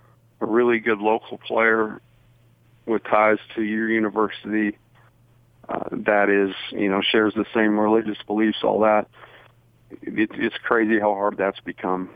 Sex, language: male, English